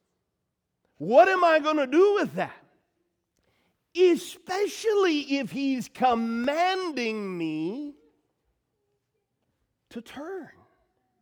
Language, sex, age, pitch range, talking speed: English, male, 50-69, 200-285 Hz, 80 wpm